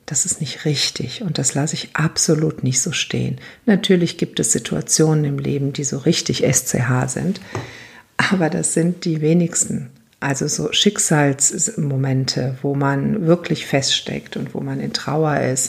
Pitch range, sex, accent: 145-220 Hz, female, German